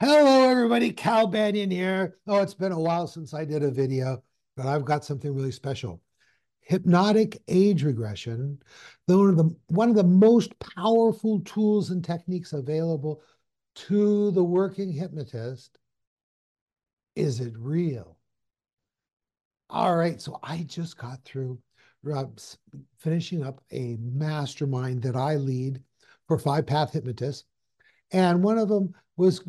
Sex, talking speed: male, 130 wpm